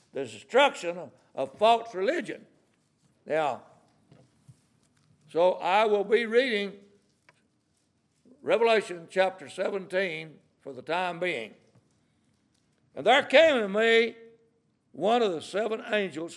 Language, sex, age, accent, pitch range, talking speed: English, male, 60-79, American, 175-225 Hz, 105 wpm